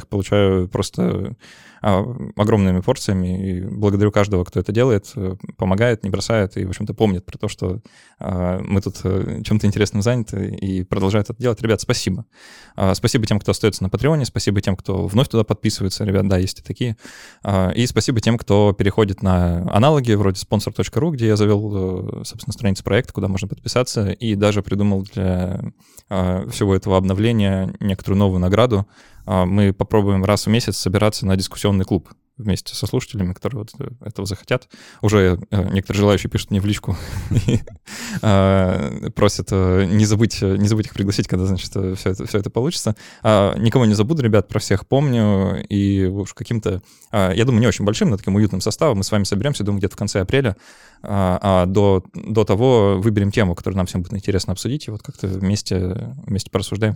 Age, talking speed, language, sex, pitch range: 20-39, 165 wpm, Russian, male, 95-110 Hz